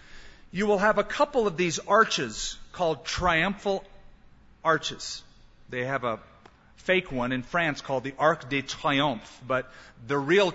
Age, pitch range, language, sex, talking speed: 40-59, 145-200 Hz, English, male, 150 wpm